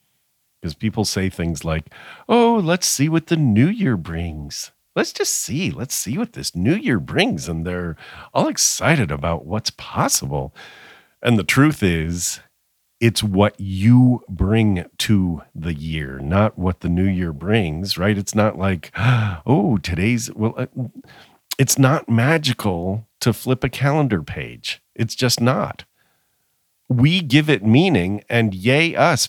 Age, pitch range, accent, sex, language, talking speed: 50-69, 90-120 Hz, American, male, English, 150 wpm